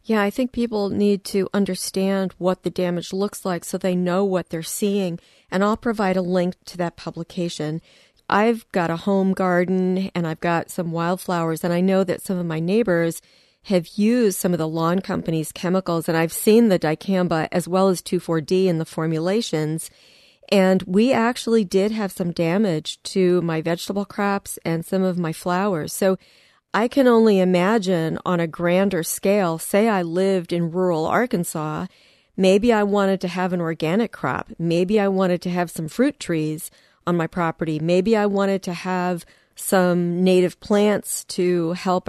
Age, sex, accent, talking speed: 40-59, female, American, 175 wpm